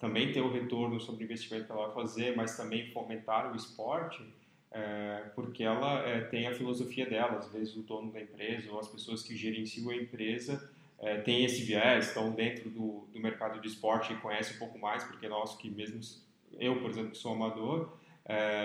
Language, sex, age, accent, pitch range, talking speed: Portuguese, male, 10-29, Brazilian, 110-125 Hz, 205 wpm